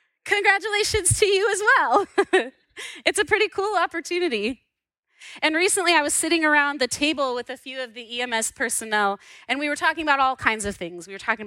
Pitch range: 200-300 Hz